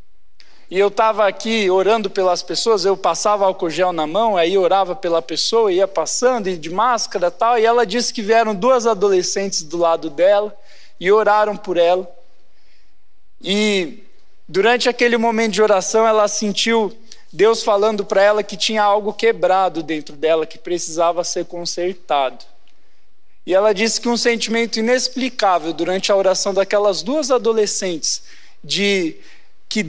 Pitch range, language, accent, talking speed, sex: 190-235 Hz, Portuguese, Brazilian, 145 wpm, male